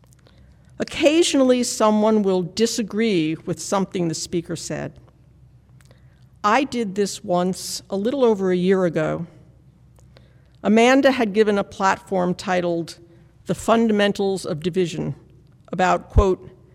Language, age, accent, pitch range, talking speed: English, 60-79, American, 170-220 Hz, 110 wpm